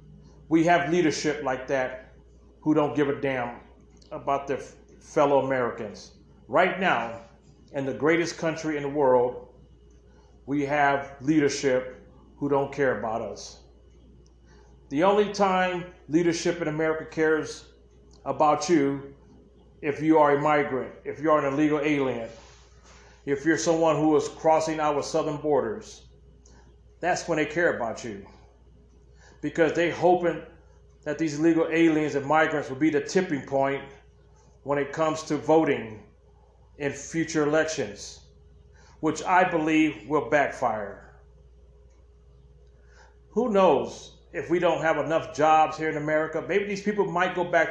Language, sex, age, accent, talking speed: English, male, 40-59, American, 140 wpm